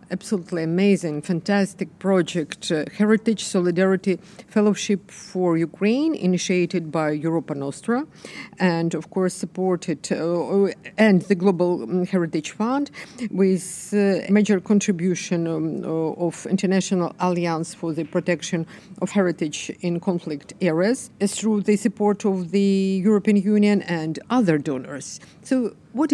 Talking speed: 120 wpm